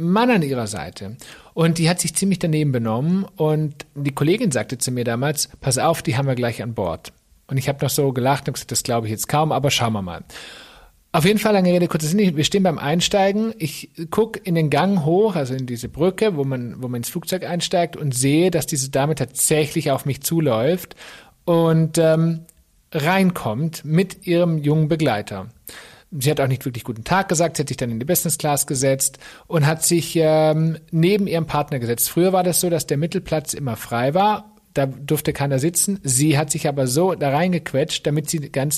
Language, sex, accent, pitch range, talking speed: German, male, German, 135-175 Hz, 210 wpm